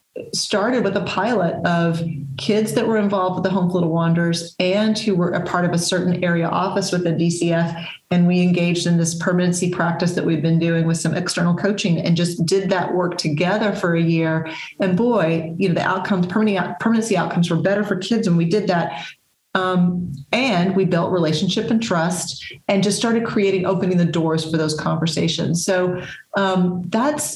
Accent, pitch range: American, 165-205 Hz